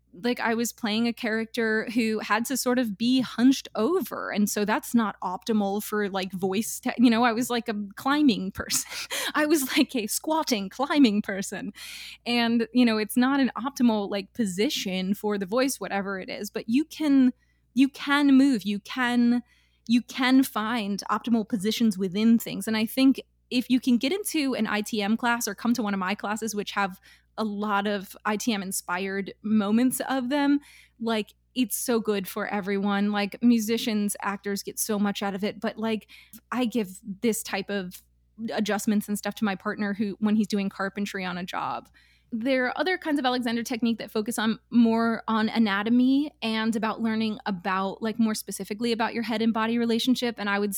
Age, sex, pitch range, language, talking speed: 20-39, female, 205-245 Hz, English, 190 wpm